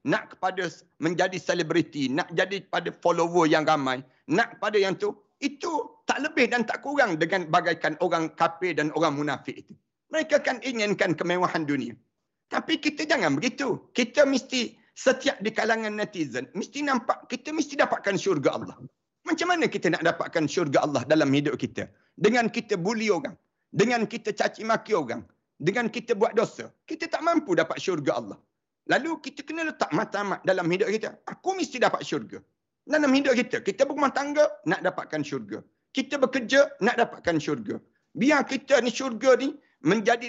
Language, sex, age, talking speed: Malay, male, 50-69, 165 wpm